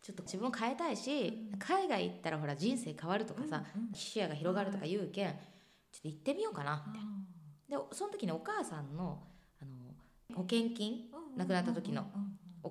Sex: female